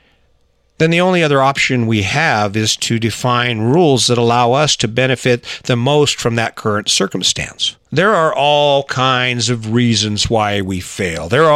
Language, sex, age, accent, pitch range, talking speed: English, male, 50-69, American, 115-155 Hz, 170 wpm